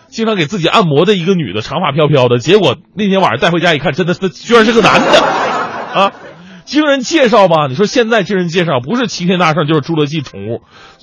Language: Chinese